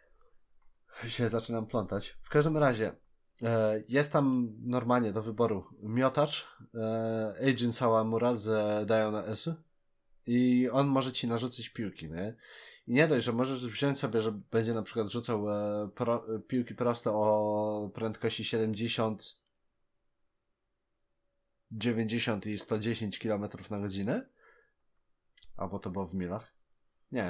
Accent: native